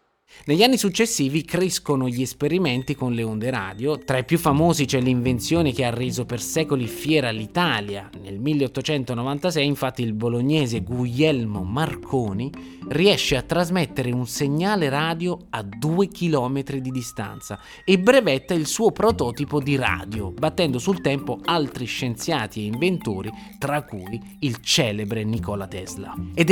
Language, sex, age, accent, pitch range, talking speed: Italian, male, 20-39, native, 115-170 Hz, 140 wpm